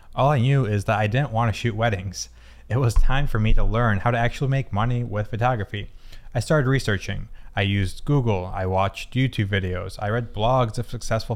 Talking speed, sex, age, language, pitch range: 210 wpm, male, 20-39, English, 100-120 Hz